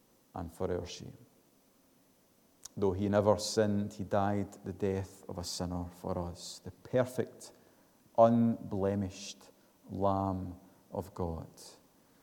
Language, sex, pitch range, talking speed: English, male, 95-115 Hz, 115 wpm